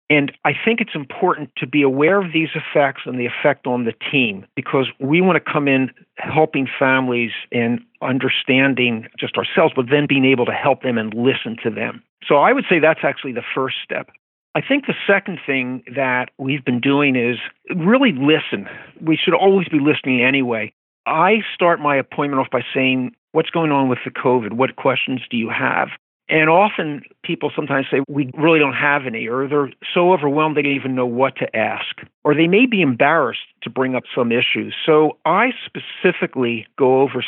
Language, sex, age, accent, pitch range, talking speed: English, male, 50-69, American, 125-155 Hz, 195 wpm